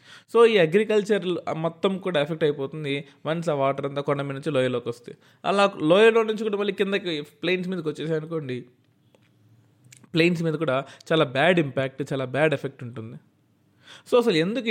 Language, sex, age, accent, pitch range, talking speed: Telugu, male, 20-39, native, 135-170 Hz, 155 wpm